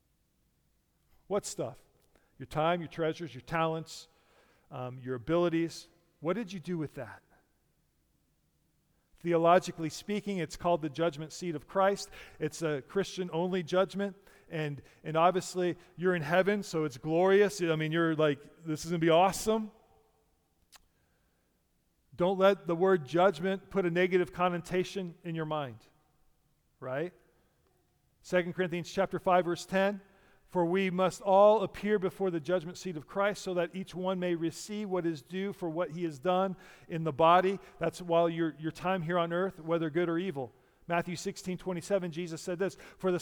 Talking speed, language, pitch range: 160 wpm, English, 165-195 Hz